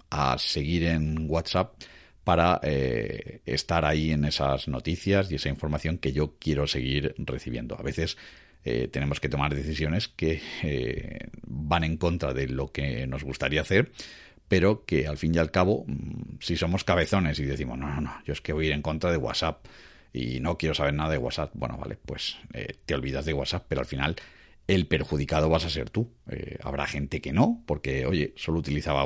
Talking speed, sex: 195 wpm, male